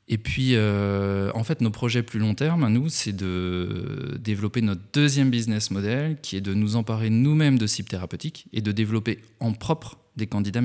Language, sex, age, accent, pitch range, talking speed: French, male, 20-39, French, 95-120 Hz, 190 wpm